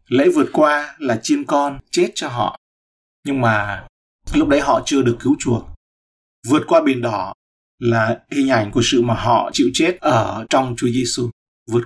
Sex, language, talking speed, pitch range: male, Vietnamese, 180 wpm, 100-140 Hz